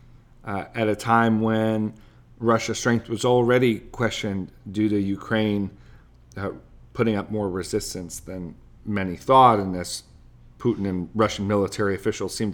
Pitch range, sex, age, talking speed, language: 100-125 Hz, male, 40-59, 140 wpm, English